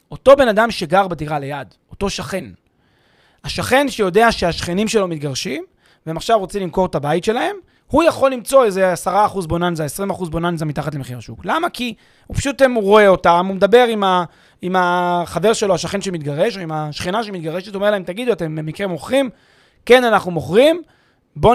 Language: Hebrew